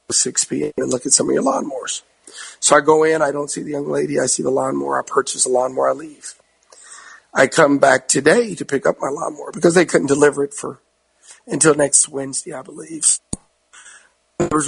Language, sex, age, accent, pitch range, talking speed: English, male, 50-69, American, 140-165 Hz, 205 wpm